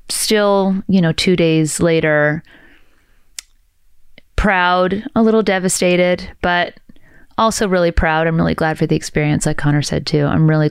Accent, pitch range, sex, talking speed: American, 155-180 Hz, female, 145 wpm